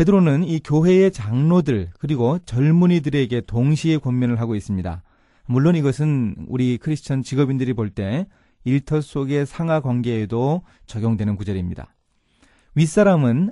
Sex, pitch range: male, 110-160 Hz